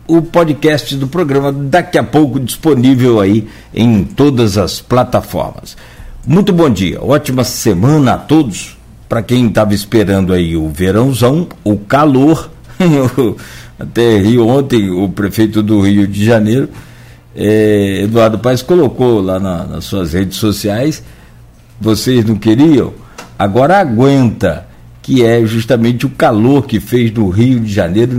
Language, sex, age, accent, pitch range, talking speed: Portuguese, male, 60-79, Brazilian, 105-145 Hz, 130 wpm